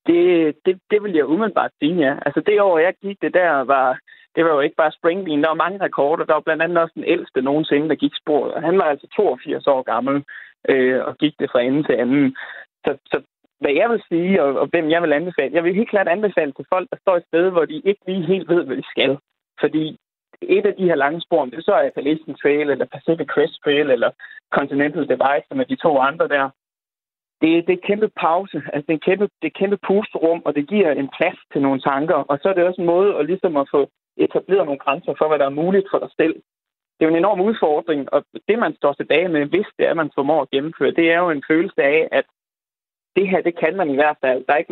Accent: native